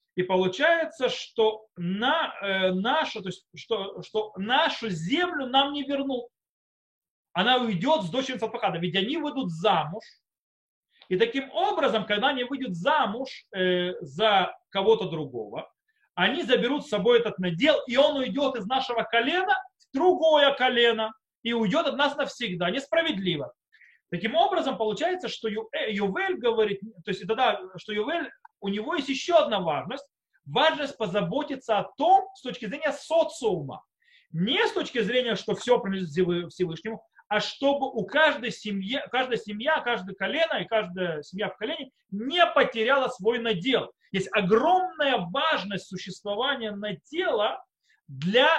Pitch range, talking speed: 195-280 Hz, 145 wpm